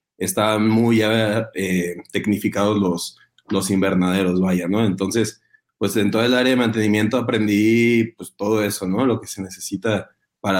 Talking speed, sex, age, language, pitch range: 155 wpm, male, 20-39, Spanish, 100-120 Hz